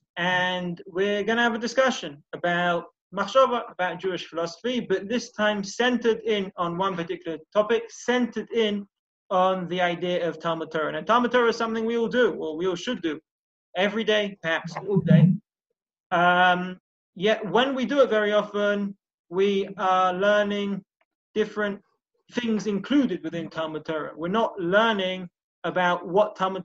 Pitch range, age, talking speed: 170-215 Hz, 20-39, 160 wpm